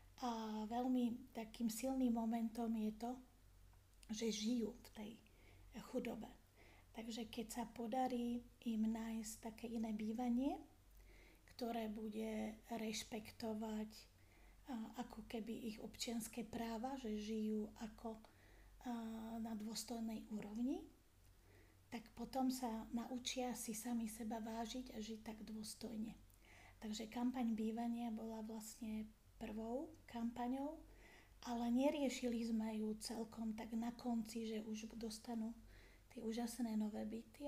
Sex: female